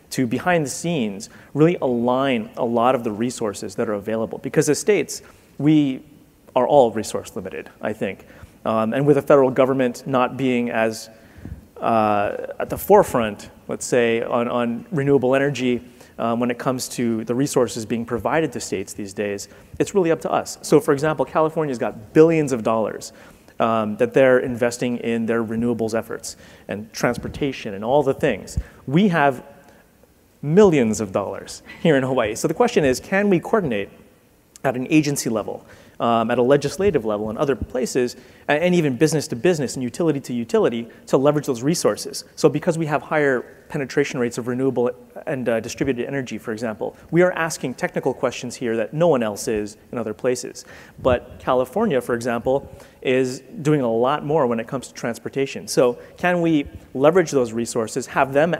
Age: 30-49